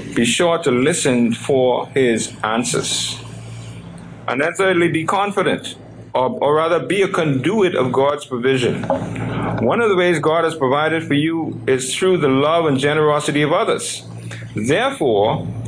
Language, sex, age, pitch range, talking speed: English, male, 50-69, 120-160 Hz, 150 wpm